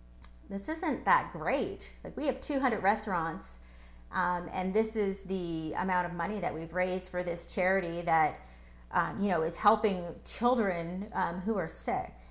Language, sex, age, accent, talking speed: English, female, 30-49, American, 165 wpm